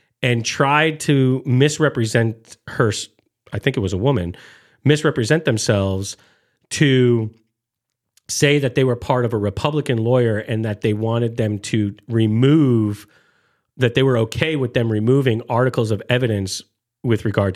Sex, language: male, English